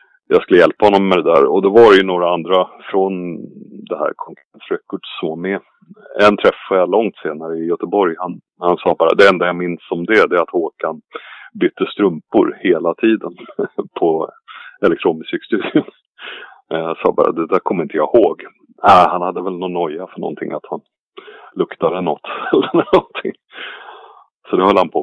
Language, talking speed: Swedish, 175 wpm